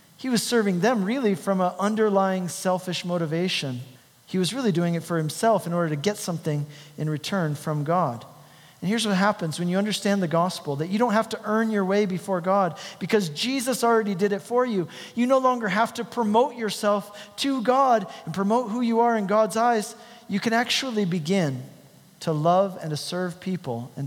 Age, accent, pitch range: 40-59, American, 150-210 Hz